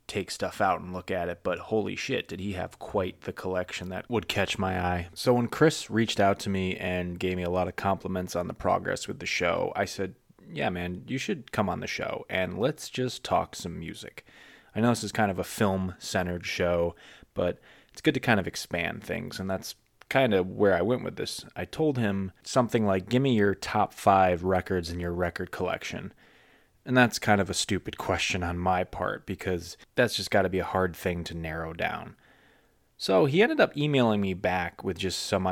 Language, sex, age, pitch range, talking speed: English, male, 20-39, 90-105 Hz, 220 wpm